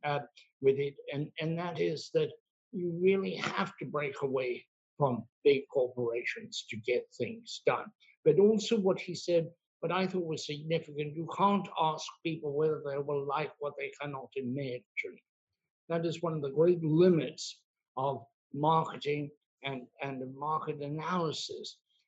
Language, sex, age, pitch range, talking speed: English, male, 60-79, 145-180 Hz, 150 wpm